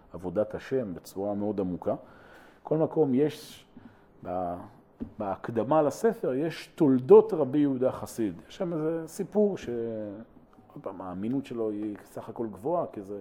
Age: 40-59